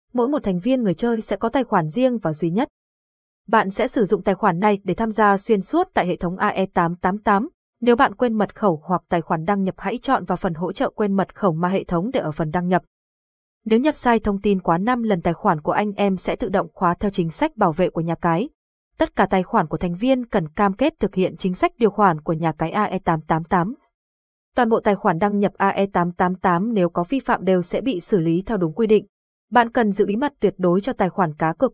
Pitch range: 175-225 Hz